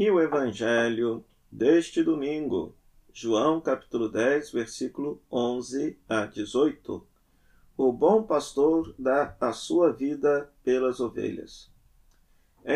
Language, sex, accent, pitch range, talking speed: Portuguese, male, Brazilian, 125-160 Hz, 105 wpm